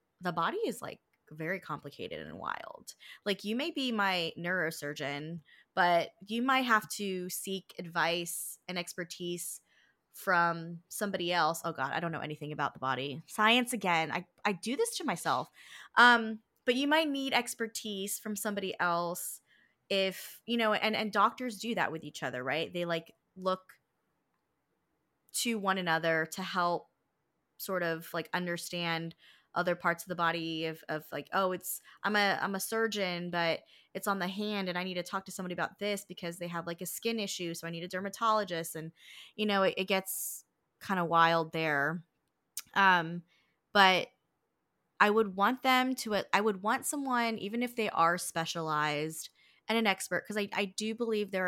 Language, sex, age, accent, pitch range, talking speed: English, female, 20-39, American, 170-210 Hz, 175 wpm